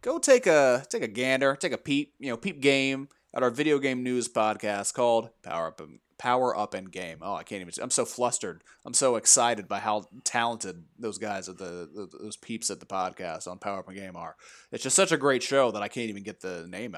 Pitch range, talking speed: 110-165 Hz, 235 wpm